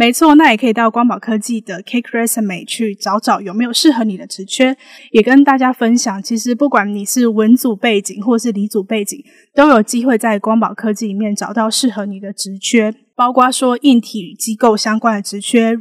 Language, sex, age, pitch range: Chinese, female, 10-29, 215-245 Hz